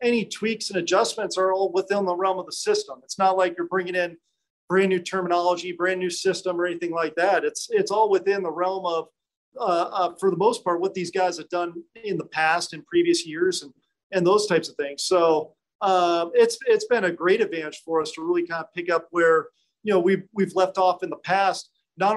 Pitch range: 170-195 Hz